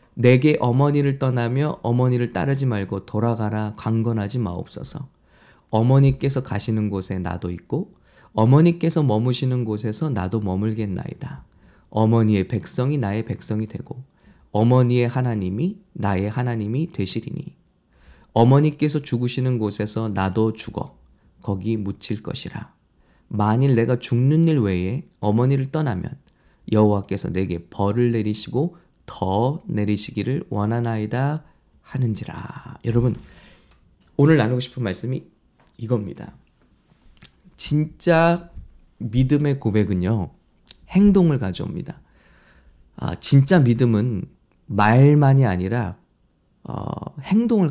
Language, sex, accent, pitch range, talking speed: English, male, Korean, 105-145 Hz, 90 wpm